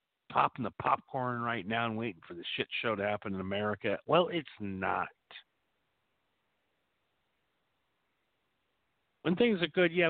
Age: 50-69